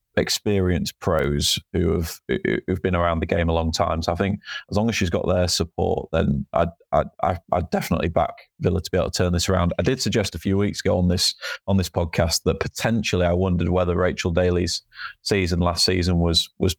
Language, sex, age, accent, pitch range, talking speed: English, male, 20-39, British, 85-95 Hz, 215 wpm